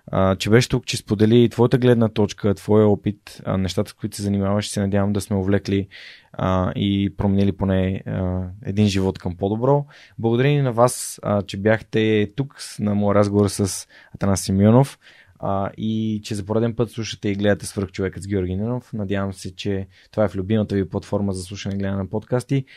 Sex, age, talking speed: male, 20-39, 180 wpm